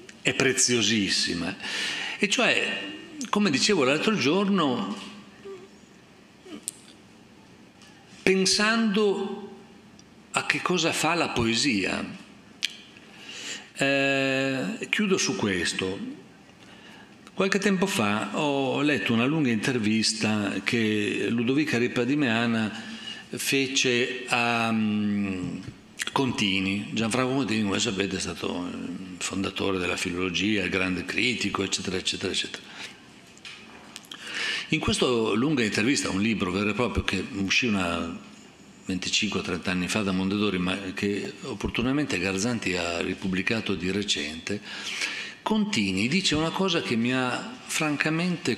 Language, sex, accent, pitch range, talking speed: Italian, male, native, 95-145 Hz, 100 wpm